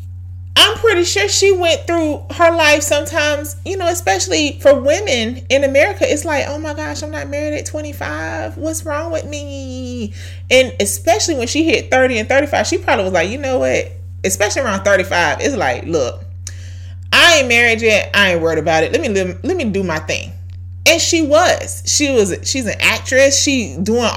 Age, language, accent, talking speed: 30-49, English, American, 190 wpm